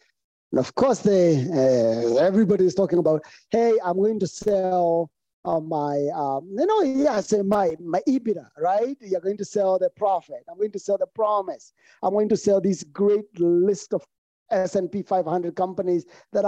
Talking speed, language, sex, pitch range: 175 wpm, English, male, 160-235 Hz